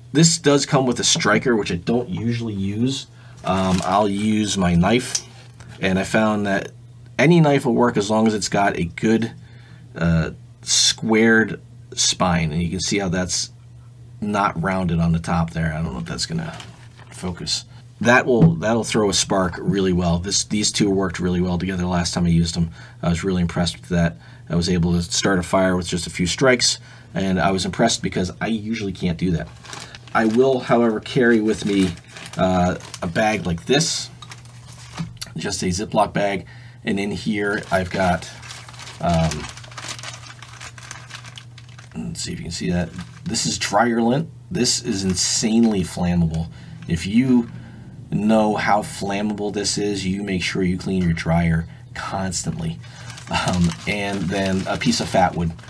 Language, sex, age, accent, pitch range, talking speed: English, male, 40-59, American, 90-120 Hz, 170 wpm